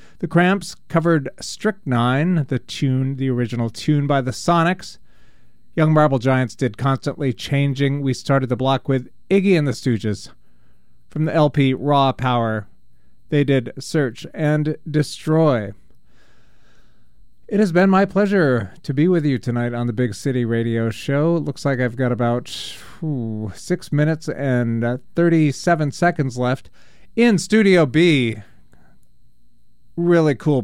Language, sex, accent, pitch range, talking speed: English, male, American, 120-160 Hz, 140 wpm